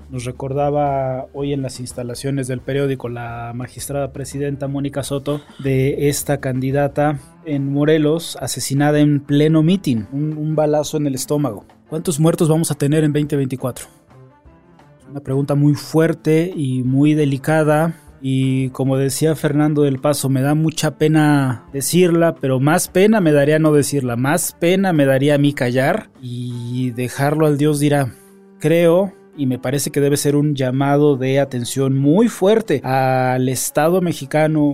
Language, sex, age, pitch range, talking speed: Spanish, male, 20-39, 135-155 Hz, 150 wpm